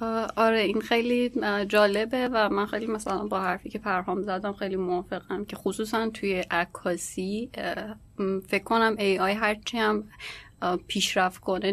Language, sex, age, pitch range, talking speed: Persian, female, 30-49, 180-210 Hz, 140 wpm